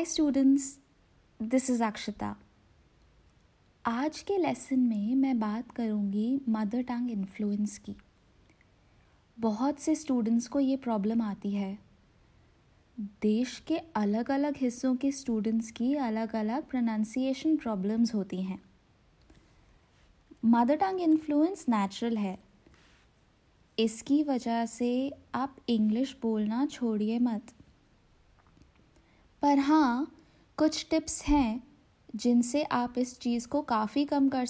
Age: 20-39